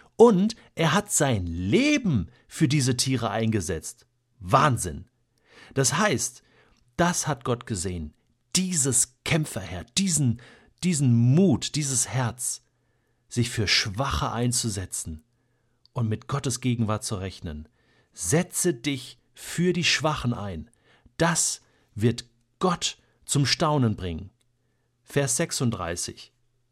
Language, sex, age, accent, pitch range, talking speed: German, male, 50-69, German, 115-145 Hz, 105 wpm